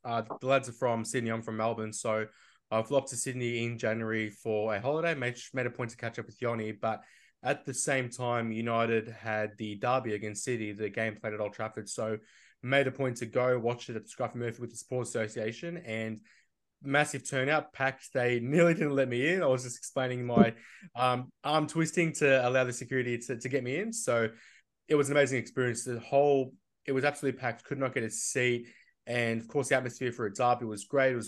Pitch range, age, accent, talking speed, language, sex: 115-130 Hz, 20-39, Australian, 225 wpm, English, male